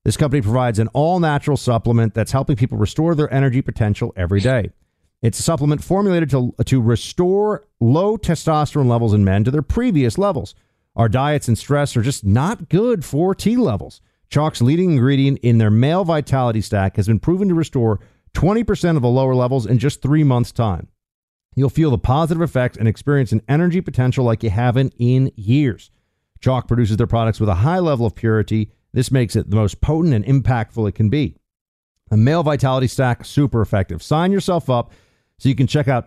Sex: male